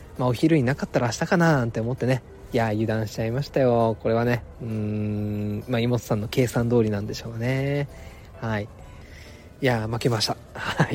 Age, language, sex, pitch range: 20-39, Japanese, male, 110-145 Hz